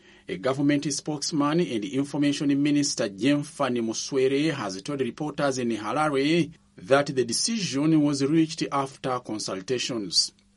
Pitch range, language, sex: 135-160 Hz, English, male